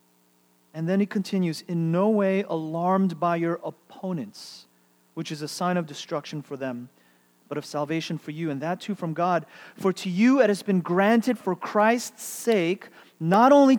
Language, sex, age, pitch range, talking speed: English, male, 30-49, 160-210 Hz, 180 wpm